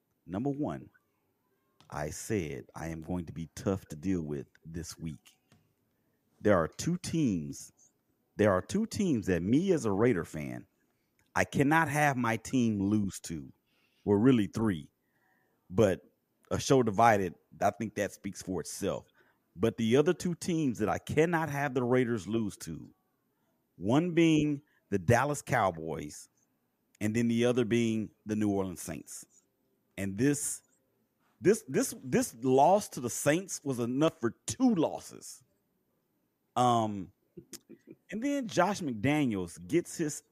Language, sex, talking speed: English, male, 145 wpm